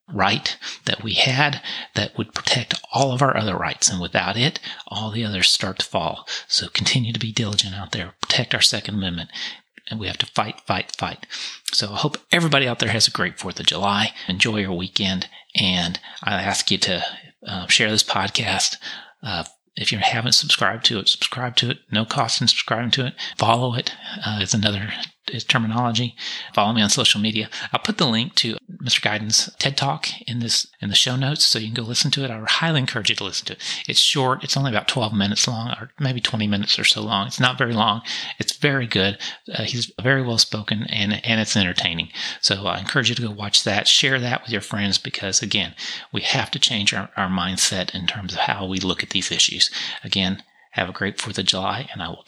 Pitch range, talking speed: 100-125 Hz, 220 wpm